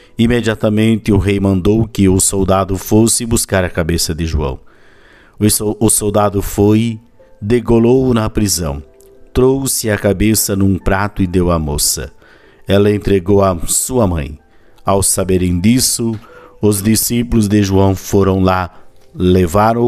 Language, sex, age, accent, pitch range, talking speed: Portuguese, male, 50-69, Brazilian, 90-110 Hz, 130 wpm